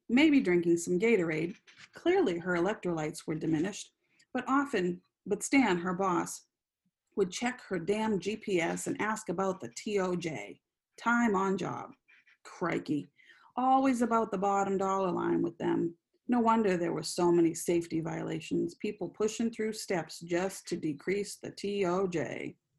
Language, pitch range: English, 170-205 Hz